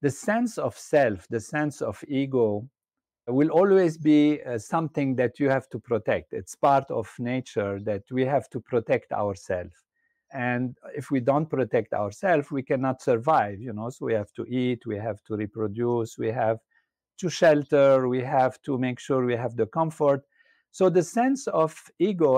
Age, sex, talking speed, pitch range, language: 50-69, male, 175 wpm, 120-155 Hz, English